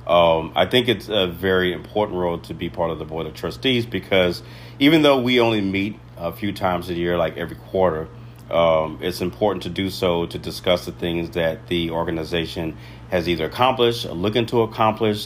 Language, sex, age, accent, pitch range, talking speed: English, male, 40-59, American, 85-105 Hz, 195 wpm